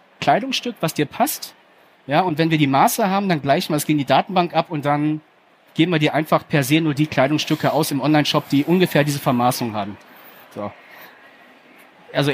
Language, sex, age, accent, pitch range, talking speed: German, male, 30-49, German, 145-175 Hz, 195 wpm